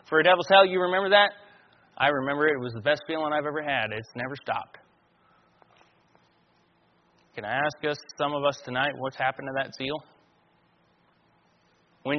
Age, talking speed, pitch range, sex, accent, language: 30-49, 170 wpm, 130-155 Hz, male, American, English